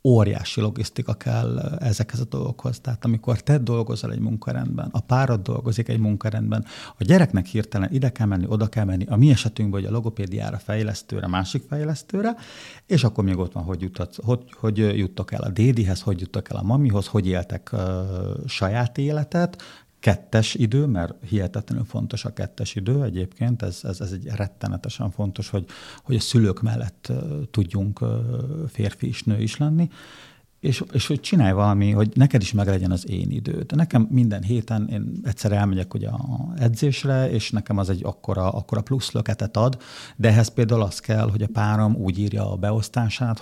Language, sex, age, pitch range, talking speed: Hungarian, male, 50-69, 105-125 Hz, 170 wpm